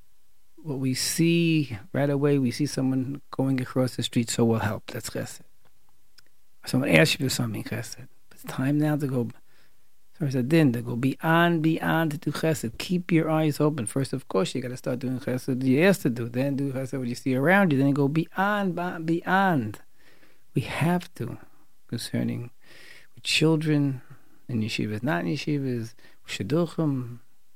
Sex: male